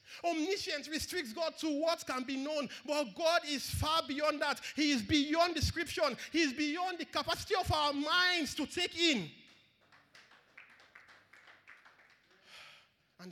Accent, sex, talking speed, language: Nigerian, male, 135 wpm, English